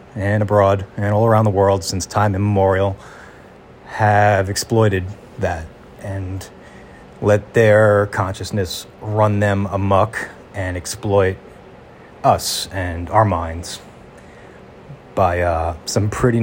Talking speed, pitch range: 110 wpm, 90-110 Hz